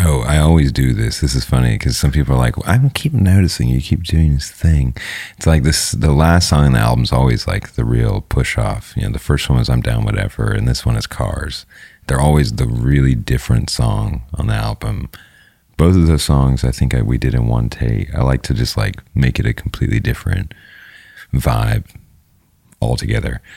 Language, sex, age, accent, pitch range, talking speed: English, male, 30-49, American, 65-105 Hz, 215 wpm